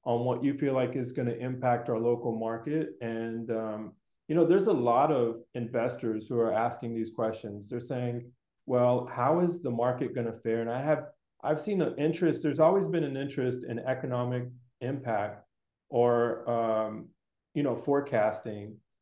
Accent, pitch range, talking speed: American, 115-140 Hz, 175 wpm